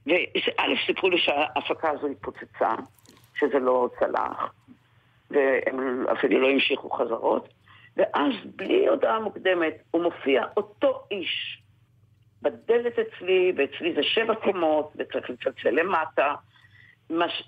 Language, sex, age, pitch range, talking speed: Hebrew, female, 50-69, 145-200 Hz, 105 wpm